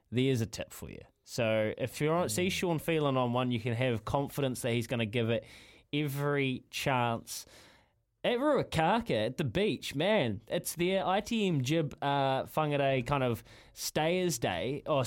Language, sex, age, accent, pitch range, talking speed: English, male, 20-39, Australian, 125-165 Hz, 165 wpm